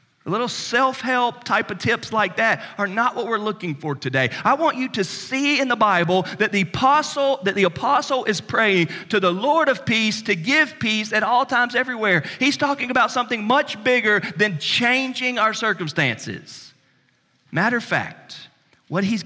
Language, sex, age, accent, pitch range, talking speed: English, male, 40-59, American, 140-215 Hz, 180 wpm